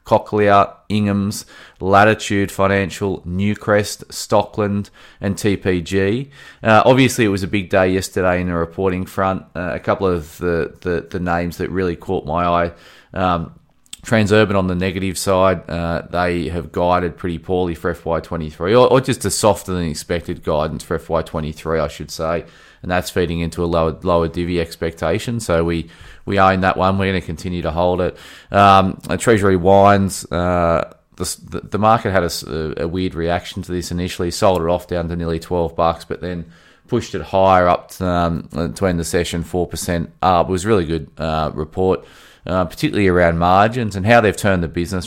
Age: 20-39